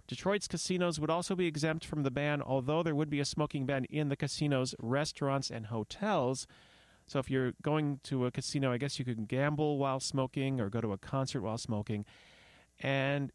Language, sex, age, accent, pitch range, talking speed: English, male, 40-59, American, 115-150 Hz, 200 wpm